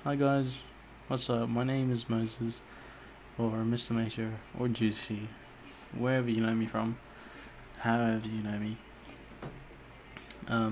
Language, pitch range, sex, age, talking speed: English, 110-125 Hz, male, 20-39, 130 wpm